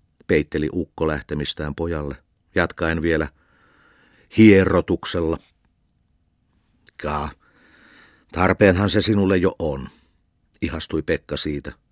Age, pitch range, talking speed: 50-69, 75-95 Hz, 80 wpm